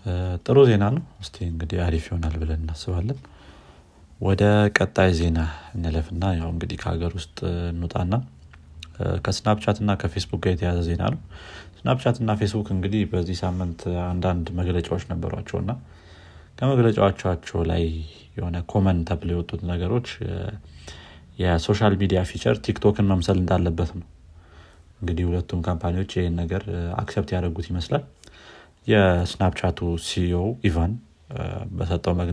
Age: 30-49